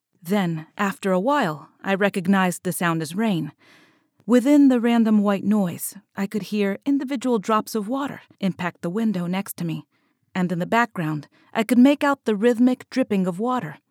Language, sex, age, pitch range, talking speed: English, female, 30-49, 175-245 Hz, 175 wpm